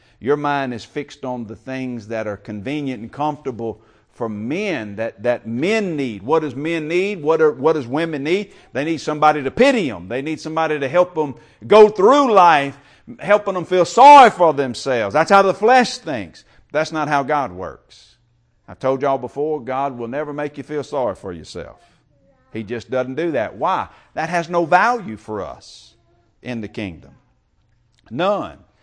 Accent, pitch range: American, 125-175 Hz